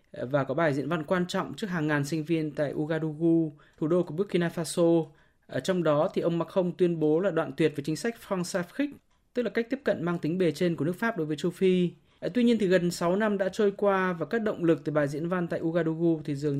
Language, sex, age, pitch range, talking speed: Vietnamese, male, 20-39, 155-190 Hz, 255 wpm